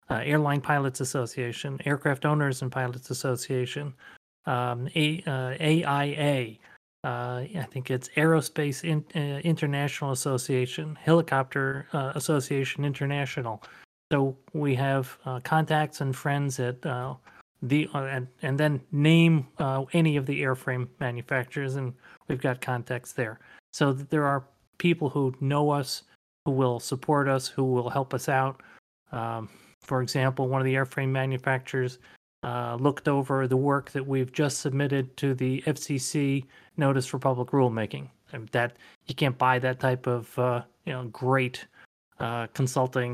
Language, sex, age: English, male, 30-49